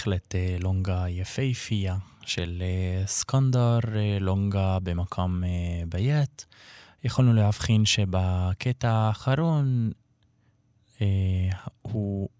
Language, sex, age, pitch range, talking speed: Hebrew, male, 20-39, 95-125 Hz, 65 wpm